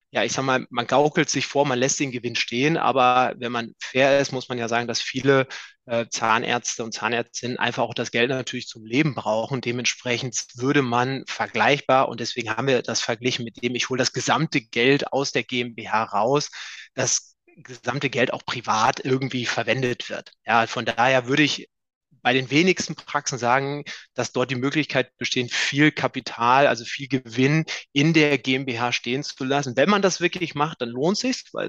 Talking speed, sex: 190 wpm, male